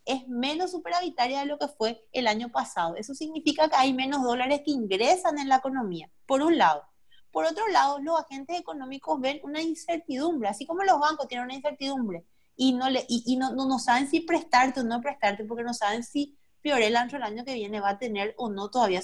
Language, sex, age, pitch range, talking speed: Spanish, female, 30-49, 220-295 Hz, 215 wpm